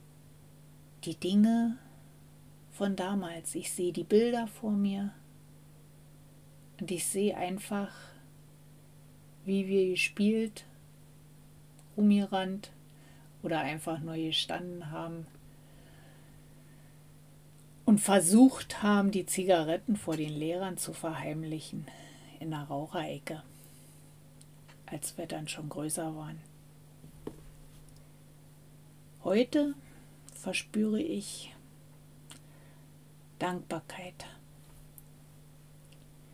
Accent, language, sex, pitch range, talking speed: German, German, female, 145-195 Hz, 75 wpm